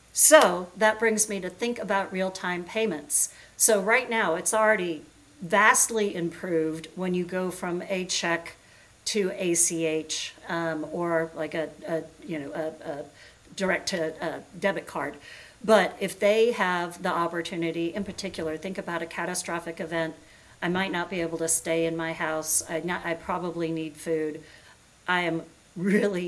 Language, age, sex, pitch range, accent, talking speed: English, 50-69, female, 160-190 Hz, American, 160 wpm